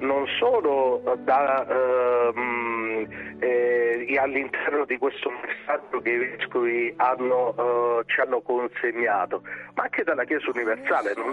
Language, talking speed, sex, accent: Italian, 105 wpm, male, native